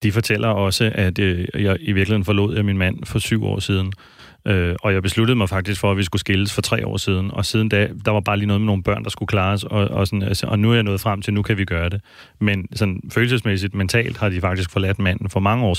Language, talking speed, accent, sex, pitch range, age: Danish, 250 wpm, native, male, 95-110 Hz, 30-49